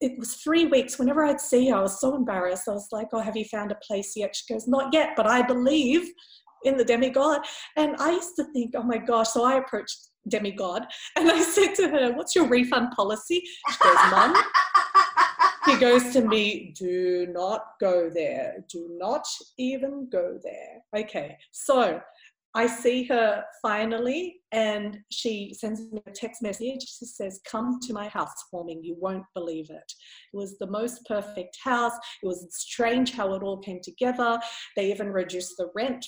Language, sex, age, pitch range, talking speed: English, female, 30-49, 210-285 Hz, 185 wpm